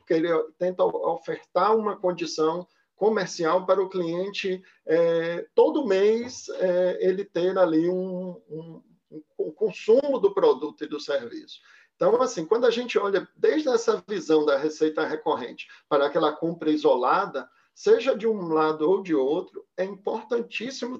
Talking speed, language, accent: 140 wpm, Portuguese, Brazilian